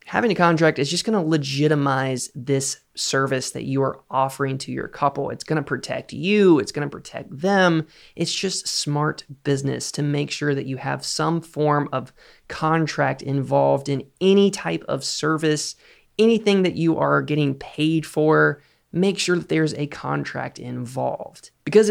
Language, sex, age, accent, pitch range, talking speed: English, male, 20-39, American, 140-170 Hz, 170 wpm